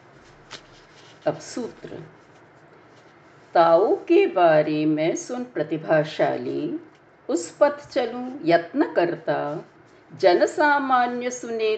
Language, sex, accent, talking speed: Hindi, female, native, 75 wpm